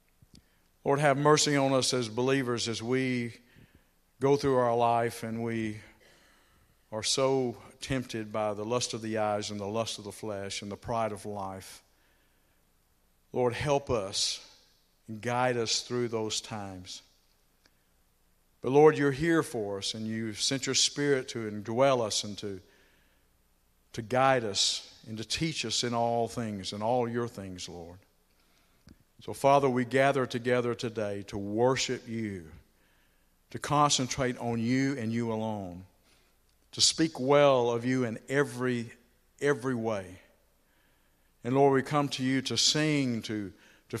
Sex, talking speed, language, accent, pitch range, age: male, 150 wpm, English, American, 105-130 Hz, 50-69